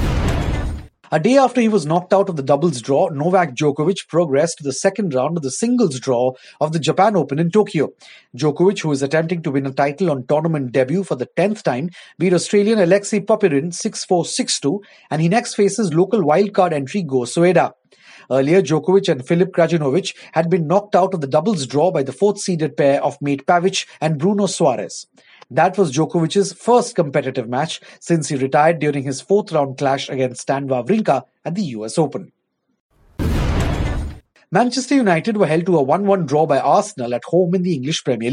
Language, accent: English, Indian